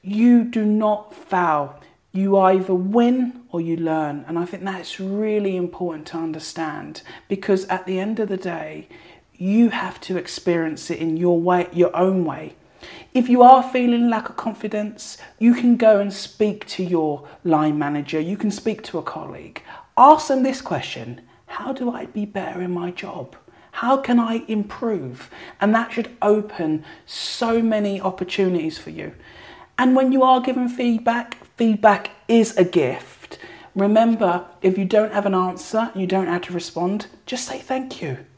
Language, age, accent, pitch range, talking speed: English, 40-59, British, 170-225 Hz, 170 wpm